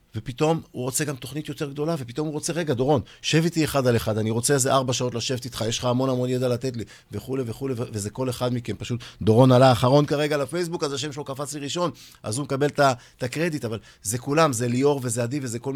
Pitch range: 110-140 Hz